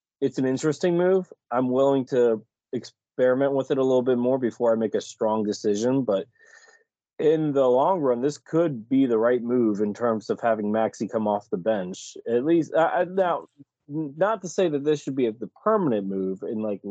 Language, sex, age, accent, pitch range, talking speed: English, male, 20-39, American, 105-145 Hz, 200 wpm